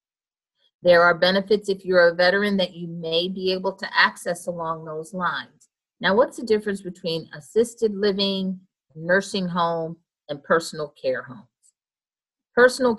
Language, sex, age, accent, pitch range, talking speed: English, female, 40-59, American, 165-200 Hz, 145 wpm